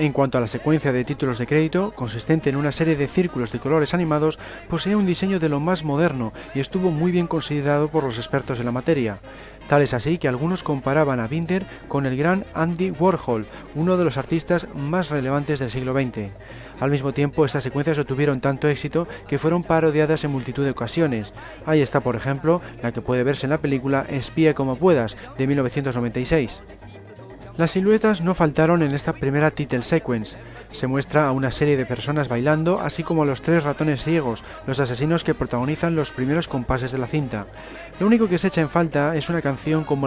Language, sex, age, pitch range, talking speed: Spanish, male, 40-59, 130-165 Hz, 200 wpm